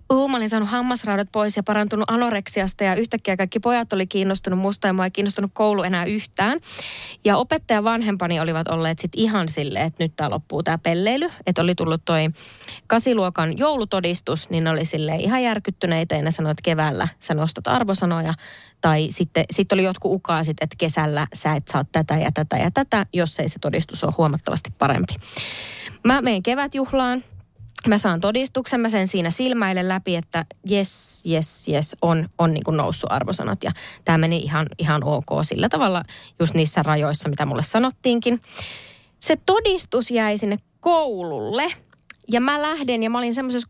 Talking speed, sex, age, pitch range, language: 175 wpm, female, 20-39, 165-230 Hz, Finnish